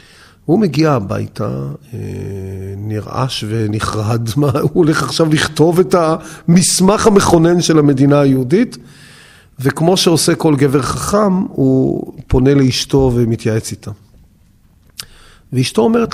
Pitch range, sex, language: 120-155 Hz, male, Hebrew